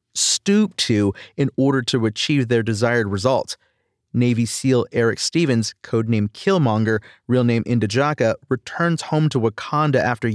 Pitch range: 115-140 Hz